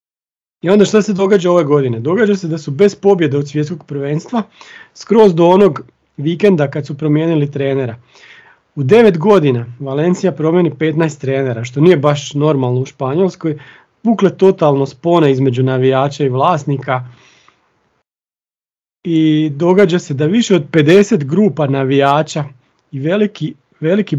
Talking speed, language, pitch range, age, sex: 140 wpm, Croatian, 135-170 Hz, 40-59, male